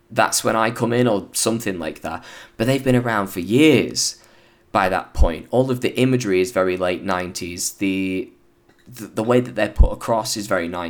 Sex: male